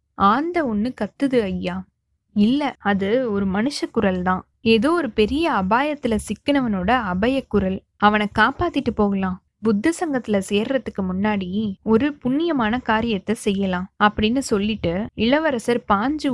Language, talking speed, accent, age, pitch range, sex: Tamil, 120 wpm, native, 20-39, 200-255 Hz, female